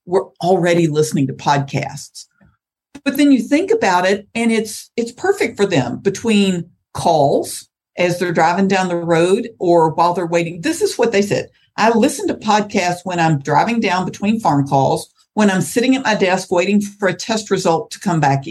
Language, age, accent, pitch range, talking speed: English, 50-69, American, 150-205 Hz, 190 wpm